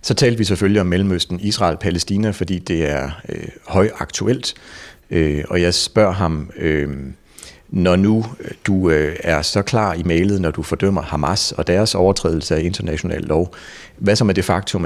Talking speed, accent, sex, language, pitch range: 180 wpm, native, male, Danish, 80-95 Hz